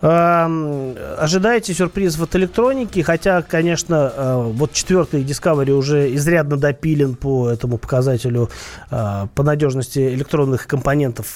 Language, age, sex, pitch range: Russian, 30-49, male, 130-170 Hz